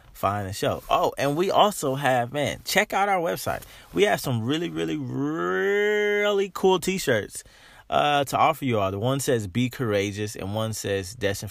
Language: English